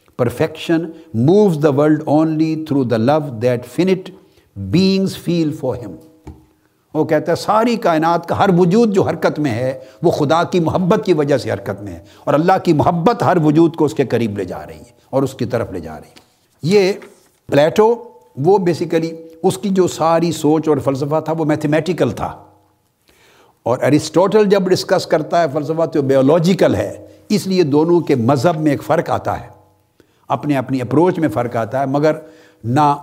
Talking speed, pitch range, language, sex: 180 wpm, 120-170 Hz, Urdu, male